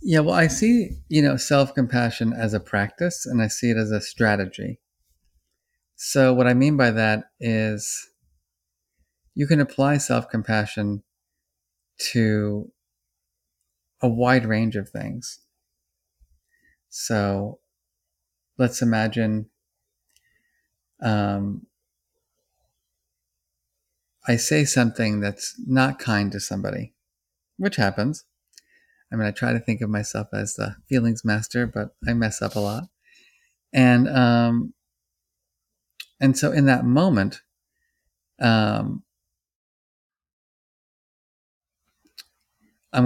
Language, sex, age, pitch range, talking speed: English, male, 30-49, 80-130 Hz, 105 wpm